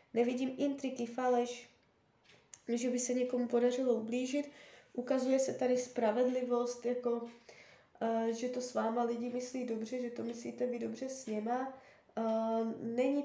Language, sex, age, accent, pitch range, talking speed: Czech, female, 20-39, native, 230-280 Hz, 130 wpm